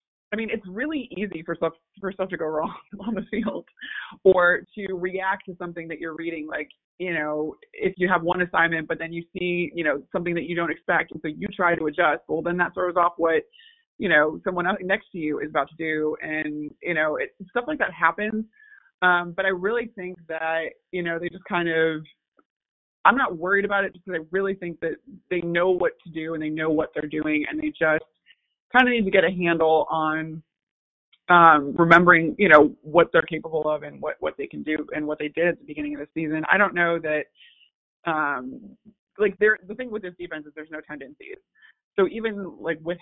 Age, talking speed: 20-39, 225 wpm